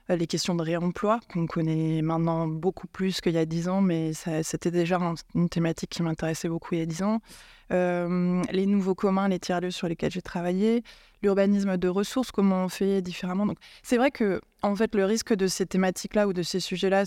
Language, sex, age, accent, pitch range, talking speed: French, female, 20-39, French, 170-200 Hz, 215 wpm